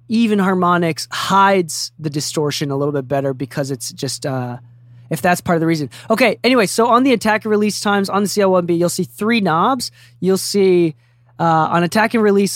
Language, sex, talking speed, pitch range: English, male, 200 wpm, 155-220 Hz